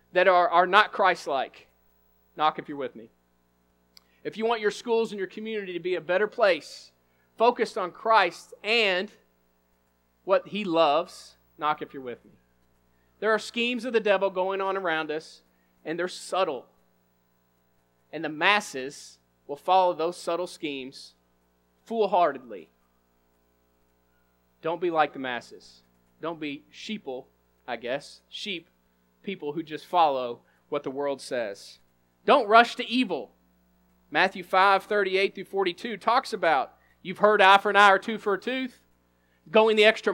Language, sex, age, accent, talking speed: English, male, 30-49, American, 150 wpm